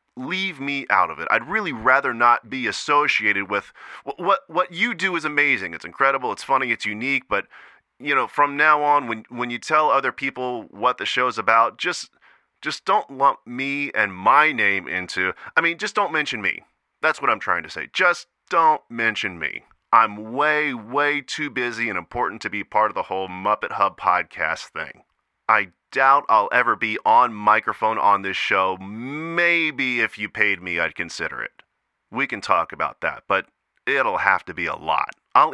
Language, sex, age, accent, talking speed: English, male, 30-49, American, 190 wpm